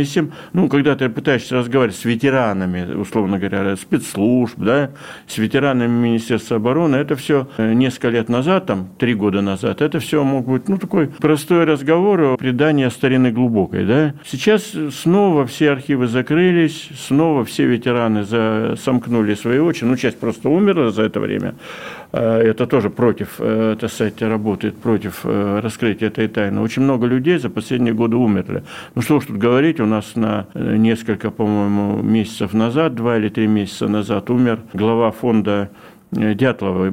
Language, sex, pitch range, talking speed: Russian, male, 105-135 Hz, 150 wpm